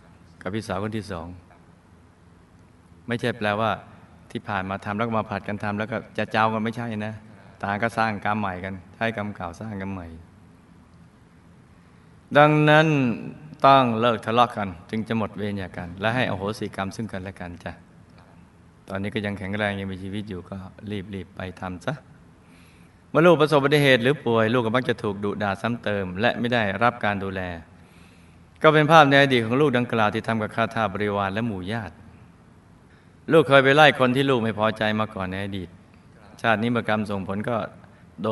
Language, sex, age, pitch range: Thai, male, 20-39, 90-120 Hz